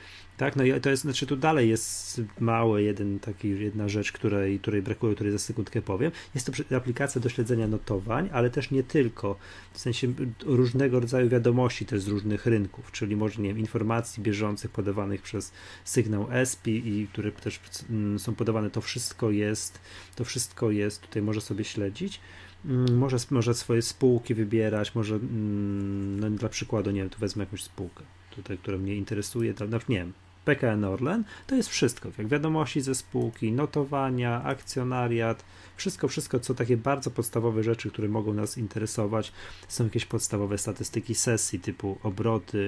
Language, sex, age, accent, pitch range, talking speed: Polish, male, 30-49, native, 100-120 Hz, 160 wpm